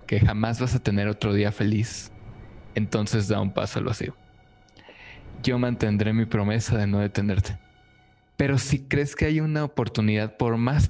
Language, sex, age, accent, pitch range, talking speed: Spanish, male, 20-39, Mexican, 100-115 Hz, 165 wpm